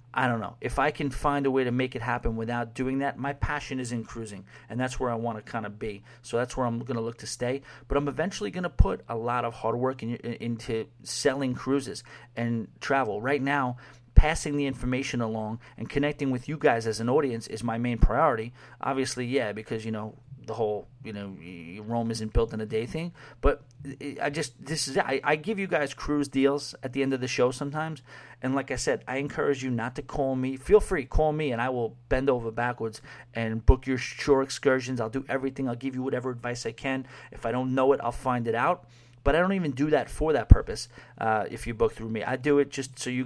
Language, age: English, 40-59